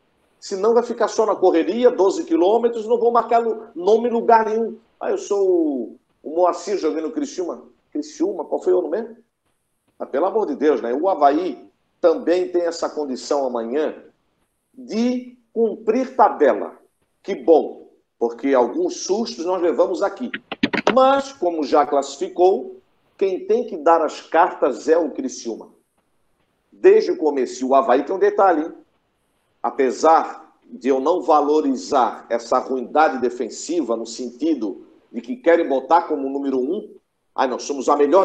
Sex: male